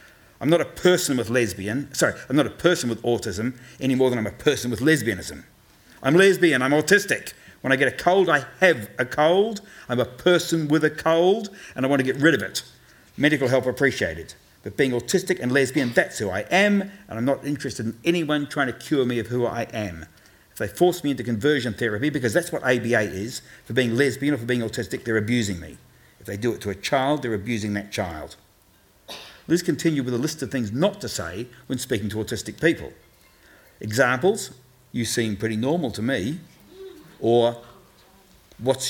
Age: 50-69